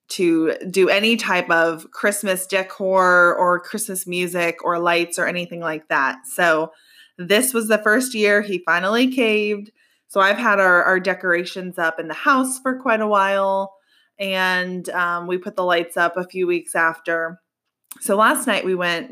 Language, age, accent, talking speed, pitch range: English, 20-39, American, 175 wpm, 175-225 Hz